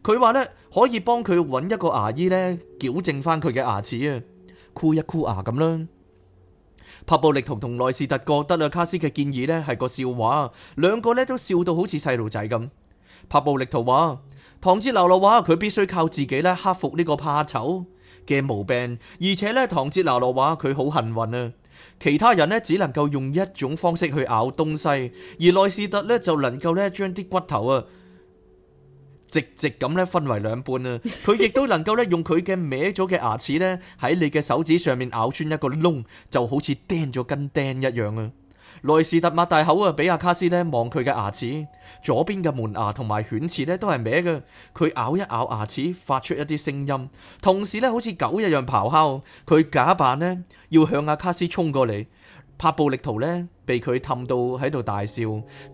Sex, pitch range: male, 125-175 Hz